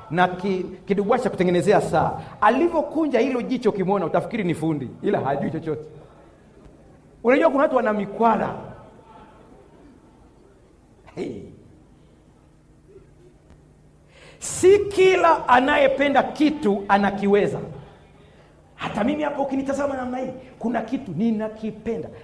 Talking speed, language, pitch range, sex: 90 wpm, Swahili, 195-285 Hz, male